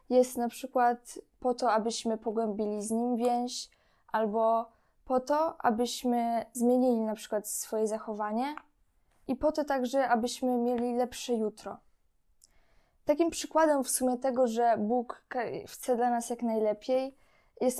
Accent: native